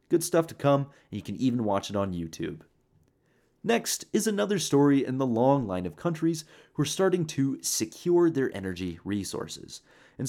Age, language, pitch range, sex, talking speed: 30-49, English, 100-155 Hz, male, 180 wpm